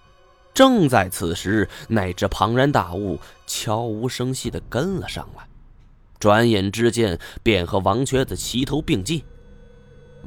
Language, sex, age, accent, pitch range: Chinese, male, 20-39, native, 90-130 Hz